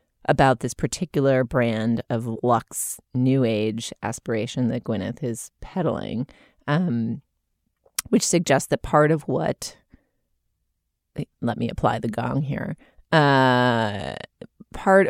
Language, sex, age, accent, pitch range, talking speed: English, female, 30-49, American, 115-140 Hz, 110 wpm